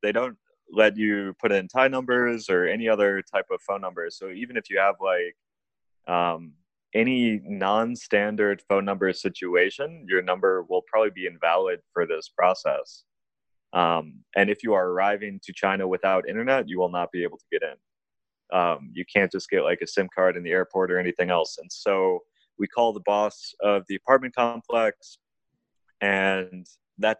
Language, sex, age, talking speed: English, male, 20-39, 180 wpm